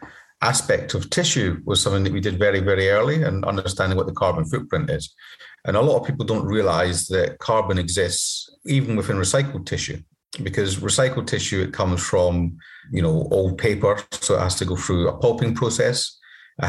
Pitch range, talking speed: 90-115 Hz, 185 wpm